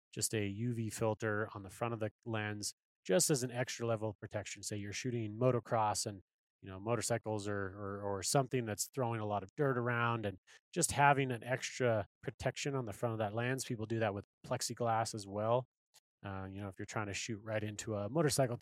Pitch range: 105-125 Hz